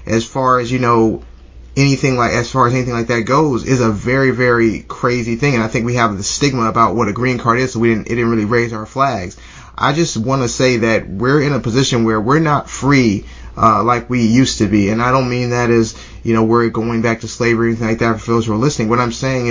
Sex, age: male, 30-49